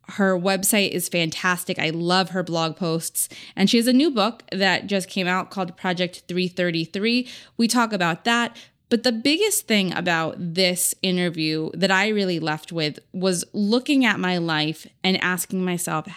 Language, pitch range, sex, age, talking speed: English, 170-210 Hz, female, 20-39, 170 wpm